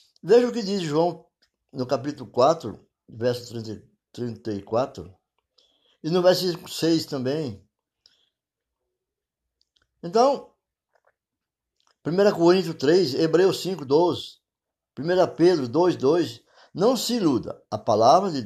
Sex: male